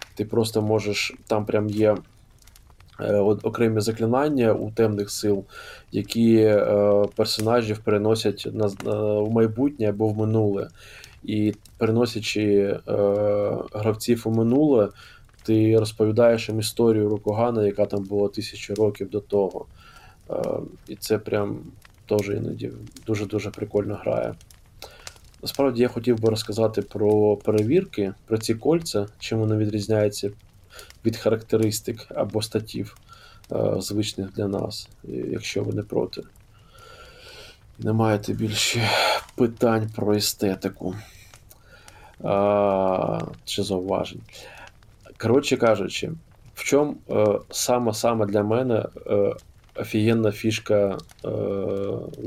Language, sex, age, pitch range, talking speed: Ukrainian, male, 20-39, 105-115 Hz, 105 wpm